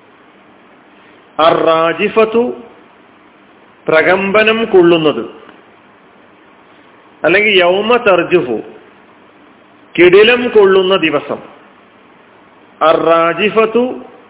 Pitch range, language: 155-220 Hz, Malayalam